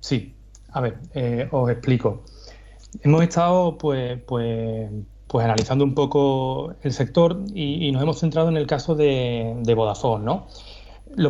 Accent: Spanish